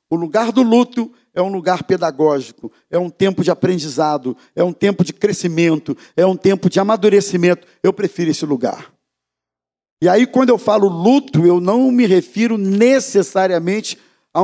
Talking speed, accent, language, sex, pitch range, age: 160 wpm, Brazilian, Portuguese, male, 150-210 Hz, 50-69